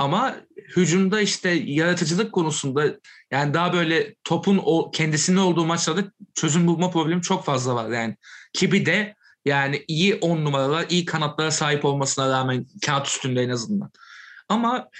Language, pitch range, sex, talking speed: Turkish, 145-190 Hz, male, 145 wpm